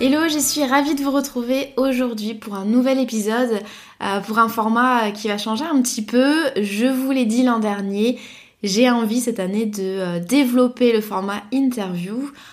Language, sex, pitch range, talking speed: French, female, 205-255 Hz, 180 wpm